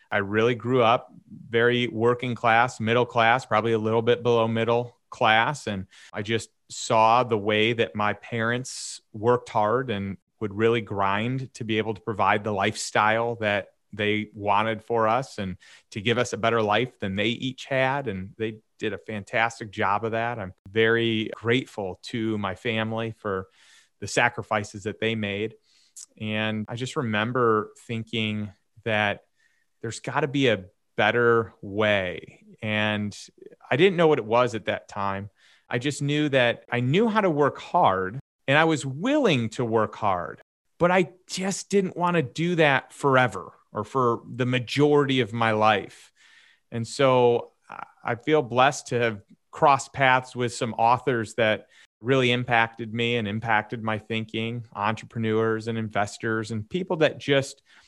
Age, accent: 30-49, American